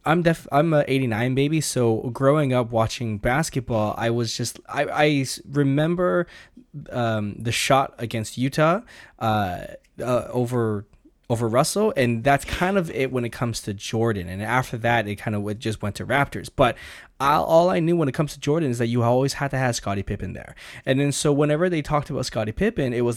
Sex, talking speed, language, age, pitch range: male, 205 wpm, English, 20-39, 110-135 Hz